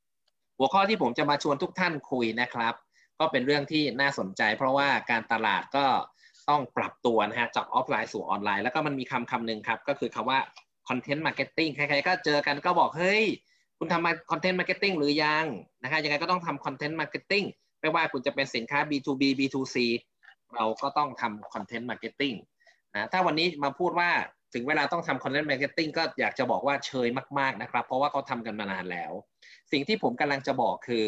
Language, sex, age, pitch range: Thai, male, 20-39, 125-160 Hz